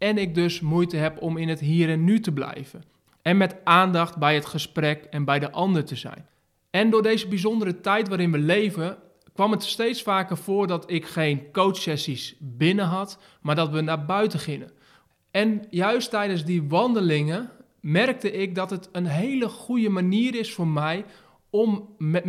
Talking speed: 185 wpm